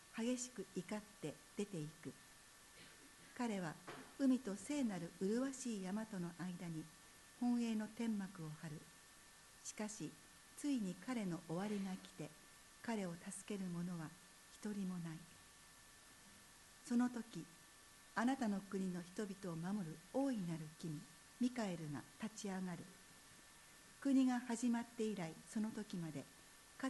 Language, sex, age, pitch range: Japanese, female, 60-79, 170-225 Hz